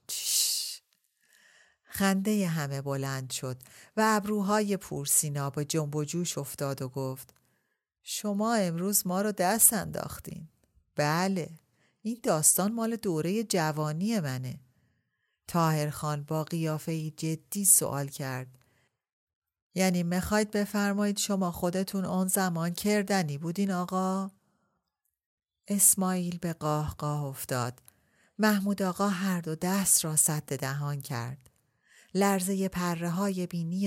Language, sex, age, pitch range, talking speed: Persian, female, 40-59, 135-190 Hz, 110 wpm